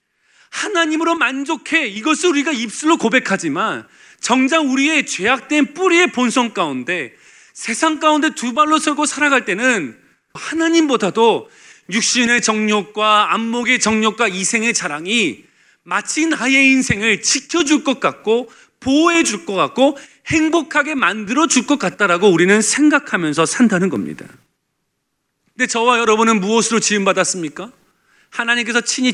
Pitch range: 210-275 Hz